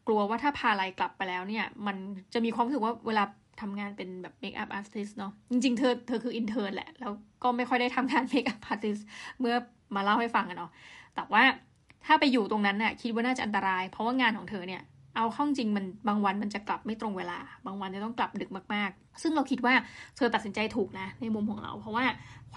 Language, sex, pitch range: Thai, female, 205-245 Hz